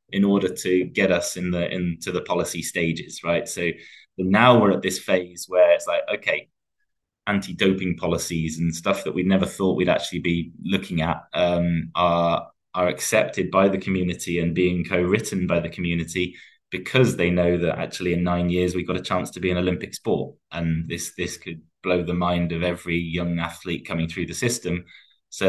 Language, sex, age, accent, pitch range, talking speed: English, male, 20-39, British, 85-95 Hz, 190 wpm